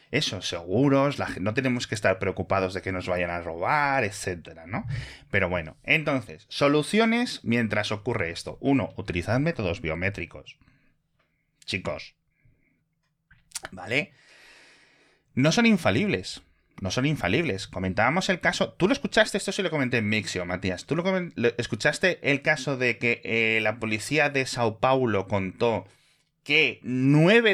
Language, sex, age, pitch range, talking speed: Spanish, male, 30-49, 105-145 Hz, 145 wpm